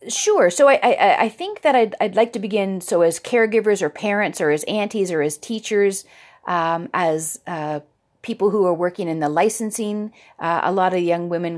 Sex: female